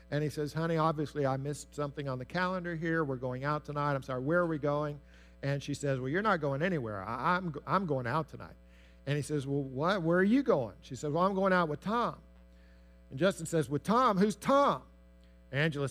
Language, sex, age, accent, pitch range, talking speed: English, male, 50-69, American, 140-225 Hz, 225 wpm